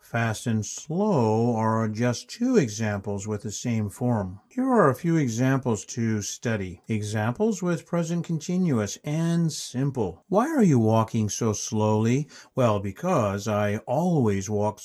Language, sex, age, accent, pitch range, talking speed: English, male, 60-79, American, 110-160 Hz, 140 wpm